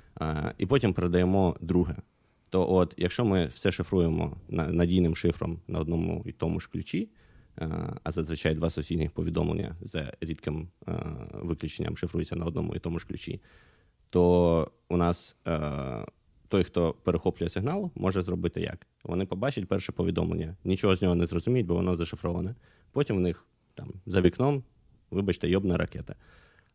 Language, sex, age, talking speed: Ukrainian, male, 20-39, 145 wpm